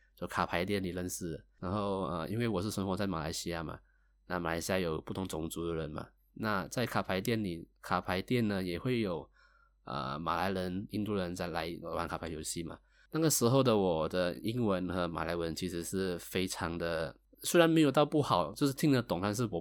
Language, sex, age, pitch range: Chinese, male, 20-39, 90-110 Hz